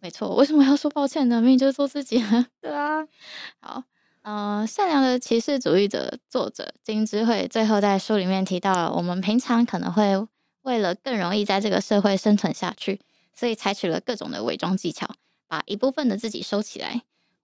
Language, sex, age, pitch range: Chinese, female, 10-29, 195-260 Hz